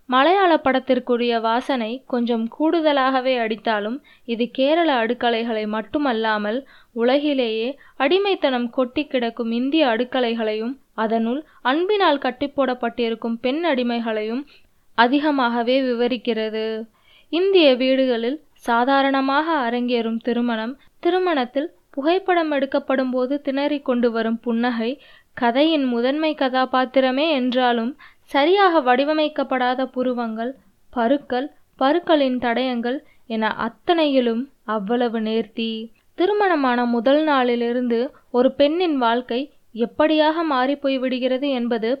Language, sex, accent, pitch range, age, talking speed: Tamil, female, native, 235-285 Hz, 20-39, 80 wpm